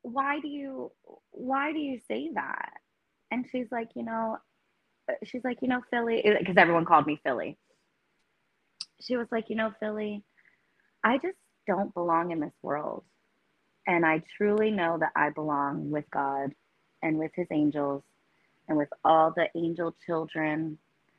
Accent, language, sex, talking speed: American, English, female, 155 wpm